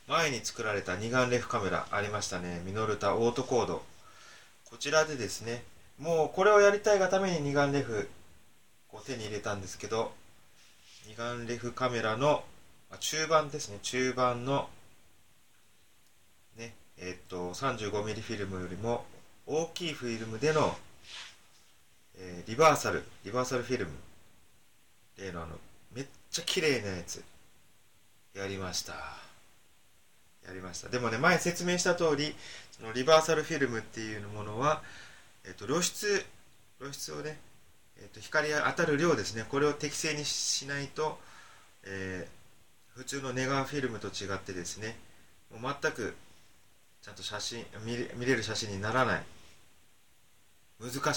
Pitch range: 95-140 Hz